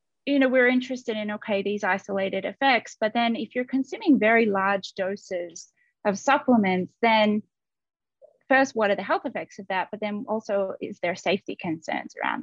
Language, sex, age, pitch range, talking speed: English, female, 20-39, 195-235 Hz, 175 wpm